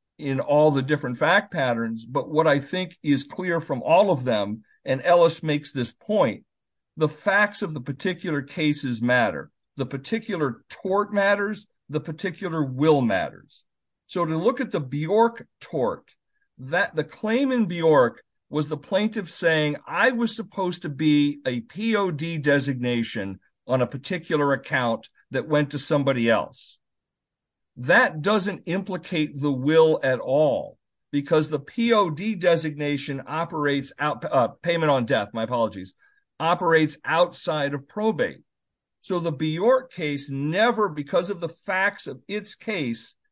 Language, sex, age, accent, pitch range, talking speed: English, male, 50-69, American, 140-195 Hz, 145 wpm